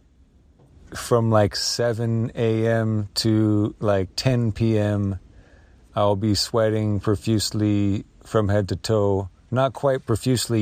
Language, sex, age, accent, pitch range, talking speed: English, male, 40-59, American, 100-115 Hz, 105 wpm